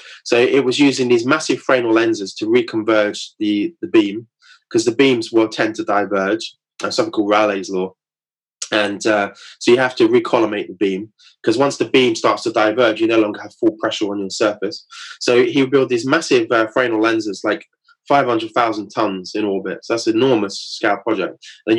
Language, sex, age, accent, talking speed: English, male, 20-39, British, 195 wpm